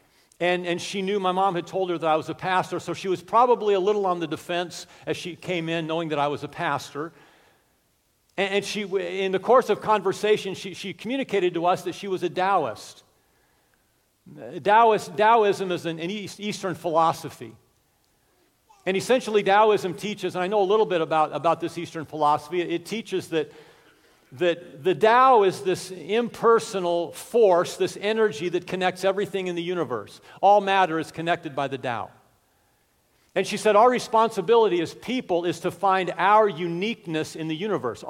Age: 50-69